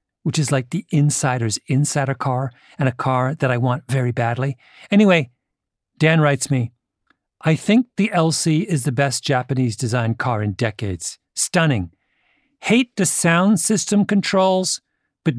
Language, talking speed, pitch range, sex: English, 145 wpm, 115-160 Hz, male